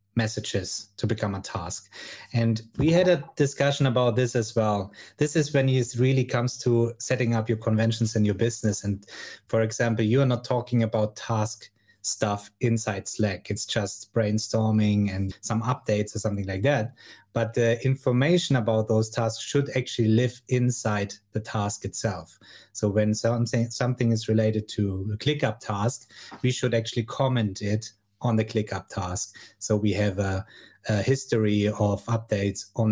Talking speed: 165 wpm